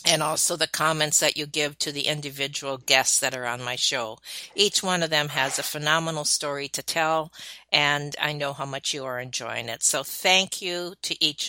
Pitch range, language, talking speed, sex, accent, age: 145-190 Hz, English, 210 wpm, female, American, 50-69